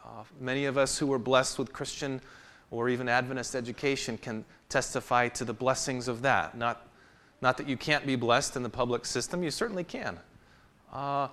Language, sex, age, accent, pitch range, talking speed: English, male, 30-49, American, 115-155 Hz, 185 wpm